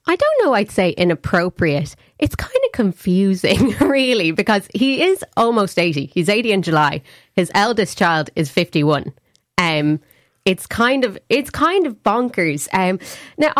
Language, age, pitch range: English, 20-39, 160-205 Hz